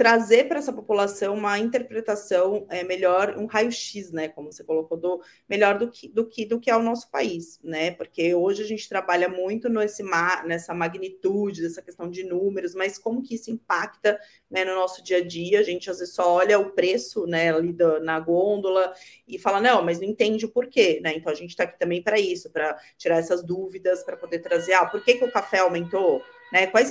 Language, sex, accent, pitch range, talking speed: Portuguese, female, Brazilian, 180-230 Hz, 210 wpm